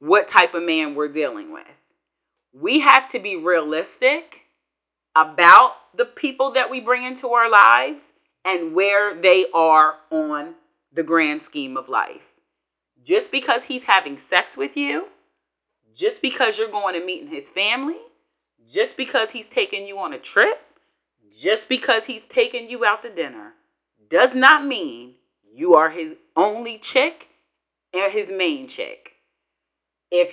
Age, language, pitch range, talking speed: 30-49, English, 180-290 Hz, 150 wpm